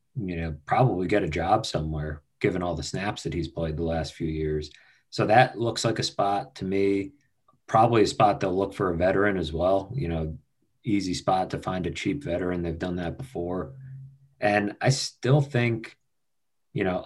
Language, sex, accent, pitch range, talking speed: English, male, American, 80-105 Hz, 195 wpm